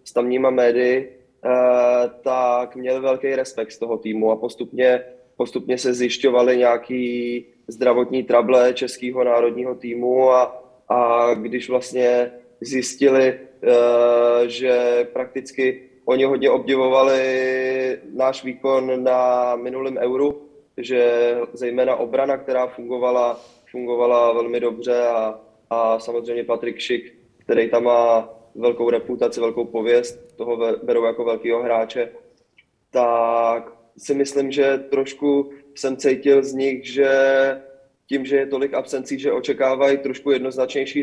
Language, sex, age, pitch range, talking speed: Czech, male, 20-39, 120-130 Hz, 115 wpm